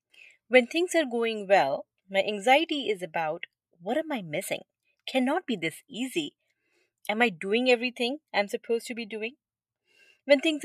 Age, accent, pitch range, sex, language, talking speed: 30-49, Indian, 180-255 Hz, female, English, 160 wpm